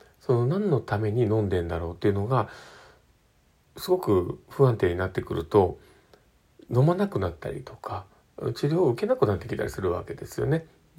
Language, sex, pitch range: Japanese, male, 105-140 Hz